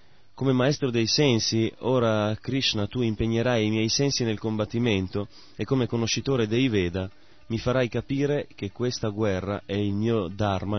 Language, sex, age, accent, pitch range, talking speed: Italian, male, 30-49, native, 100-115 Hz, 155 wpm